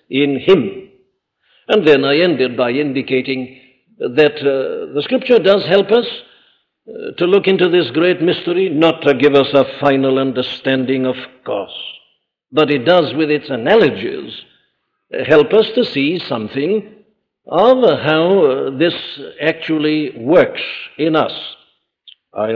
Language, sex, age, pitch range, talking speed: English, male, 60-79, 135-180 Hz, 140 wpm